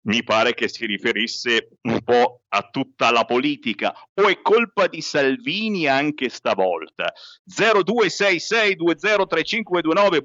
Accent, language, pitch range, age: native, Italian, 135-215 Hz, 50-69